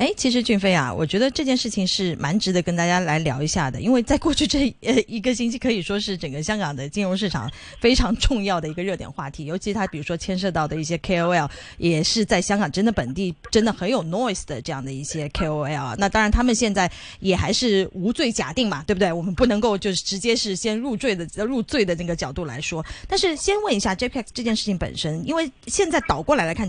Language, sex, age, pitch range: Chinese, female, 30-49, 175-245 Hz